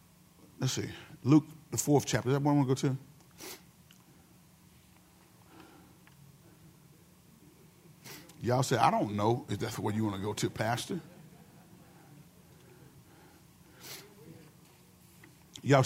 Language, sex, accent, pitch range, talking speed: English, male, American, 140-185 Hz, 110 wpm